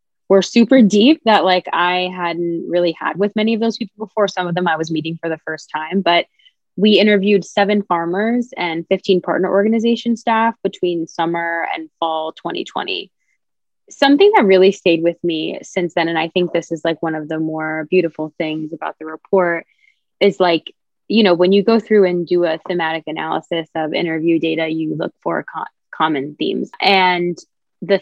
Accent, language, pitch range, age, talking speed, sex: American, English, 165-205 Hz, 20-39, 185 wpm, female